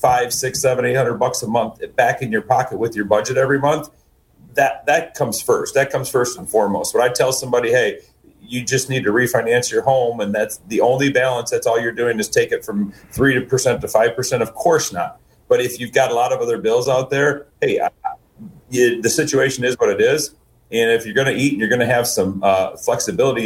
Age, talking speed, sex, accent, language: 40-59, 235 wpm, male, American, English